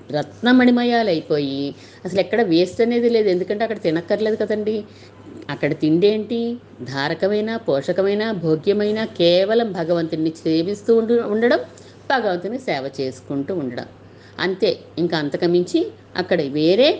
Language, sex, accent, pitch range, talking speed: Telugu, female, native, 140-210 Hz, 105 wpm